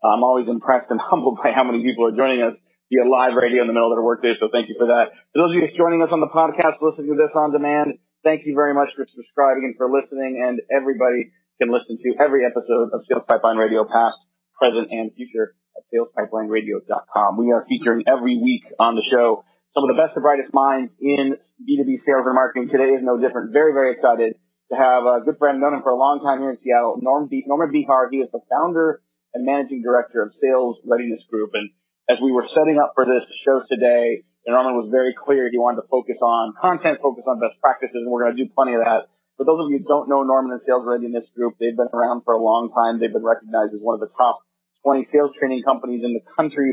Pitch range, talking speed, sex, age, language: 120-140 Hz, 240 wpm, male, 30-49, English